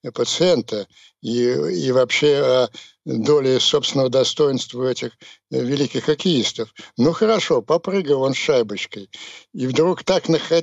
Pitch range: 125-160 Hz